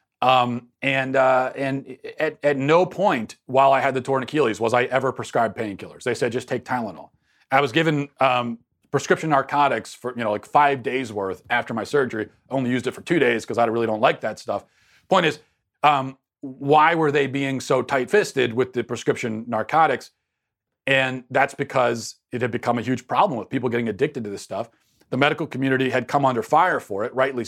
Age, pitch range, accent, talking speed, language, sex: 40-59, 120-145 Hz, American, 205 wpm, English, male